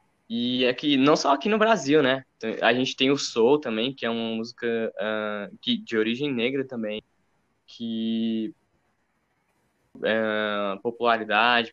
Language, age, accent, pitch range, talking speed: Portuguese, 10-29, Brazilian, 110-135 Hz, 120 wpm